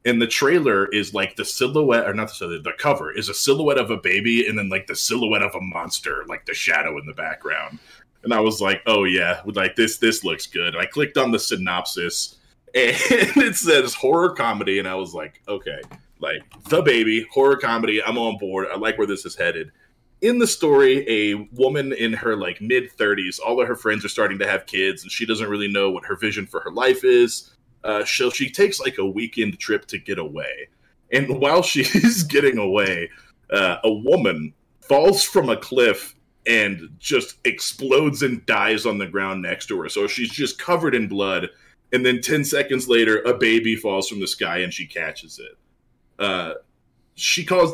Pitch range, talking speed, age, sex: 105-160 Hz, 205 wpm, 20-39, male